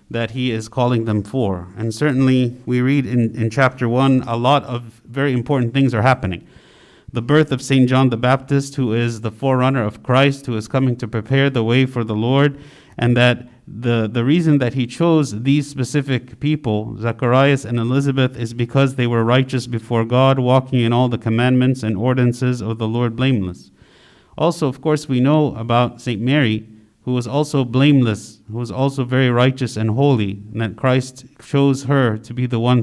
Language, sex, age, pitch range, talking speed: English, male, 50-69, 115-135 Hz, 190 wpm